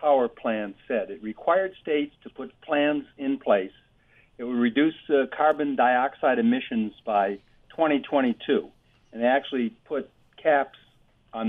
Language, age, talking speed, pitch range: English, 60-79, 135 wpm, 115-150 Hz